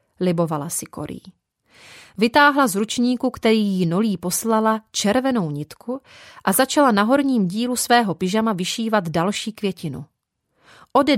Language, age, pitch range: Czech, 30-49, 195-245 Hz